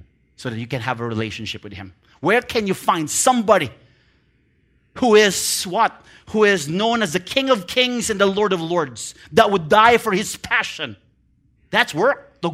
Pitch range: 120-170 Hz